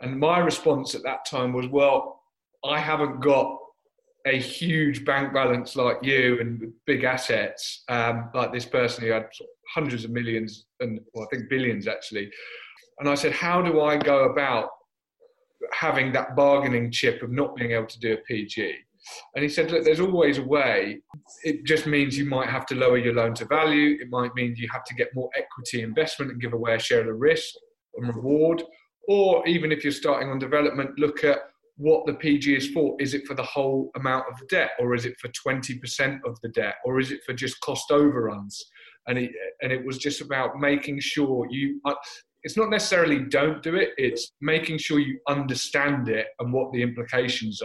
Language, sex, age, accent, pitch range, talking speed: English, male, 30-49, British, 120-155 Hz, 200 wpm